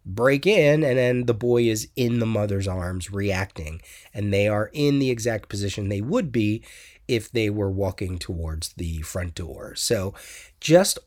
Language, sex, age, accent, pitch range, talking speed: English, male, 30-49, American, 100-140 Hz, 175 wpm